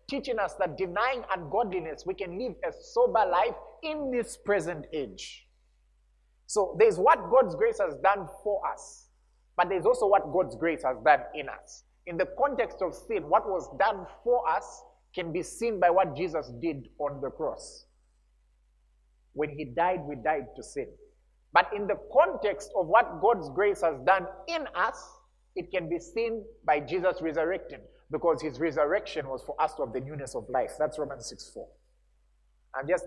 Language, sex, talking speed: English, male, 175 wpm